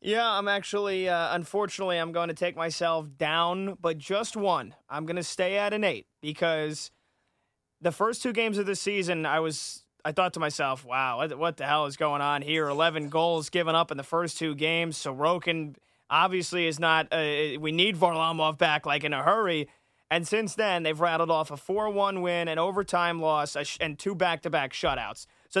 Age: 20-39